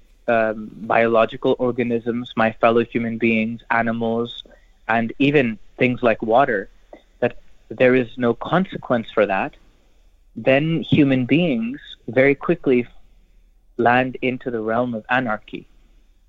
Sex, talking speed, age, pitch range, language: male, 115 wpm, 30-49, 110-145 Hz, English